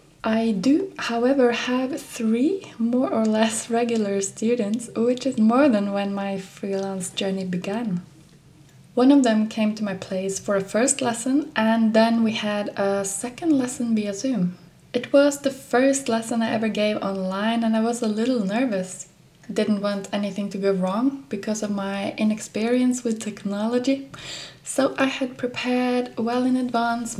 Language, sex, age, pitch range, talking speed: English, female, 20-39, 200-245 Hz, 160 wpm